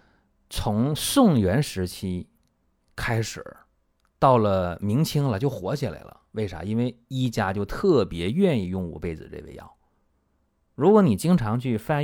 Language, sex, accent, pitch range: Chinese, male, native, 85-130 Hz